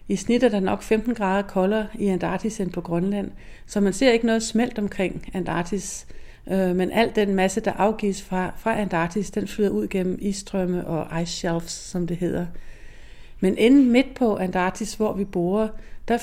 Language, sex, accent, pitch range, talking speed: Danish, female, native, 185-215 Hz, 185 wpm